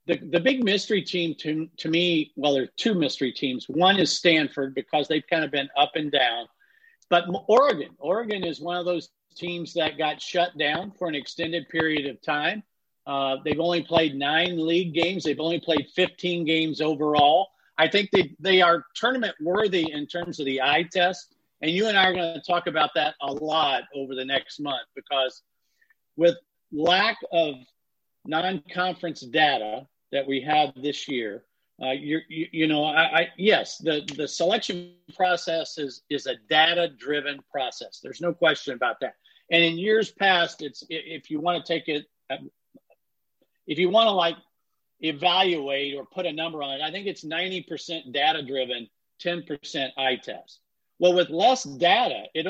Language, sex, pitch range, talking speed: English, male, 145-180 Hz, 175 wpm